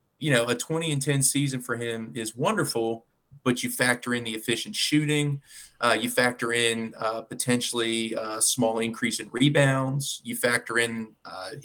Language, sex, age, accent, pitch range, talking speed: English, male, 30-49, American, 115-140 Hz, 175 wpm